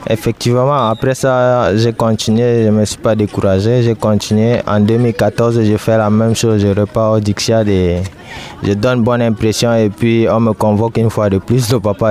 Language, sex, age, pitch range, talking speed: French, male, 20-39, 100-115 Hz, 200 wpm